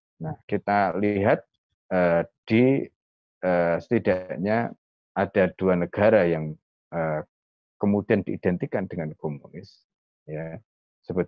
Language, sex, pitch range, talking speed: Indonesian, male, 80-100 Hz, 95 wpm